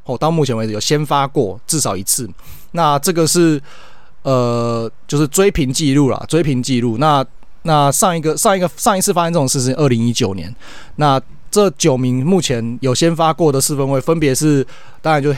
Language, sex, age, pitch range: Chinese, male, 20-39, 120-155 Hz